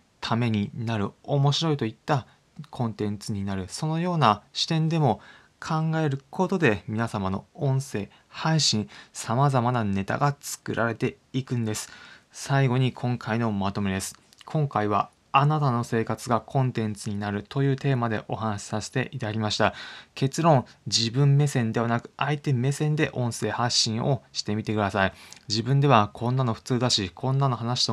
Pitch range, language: 110-140 Hz, Japanese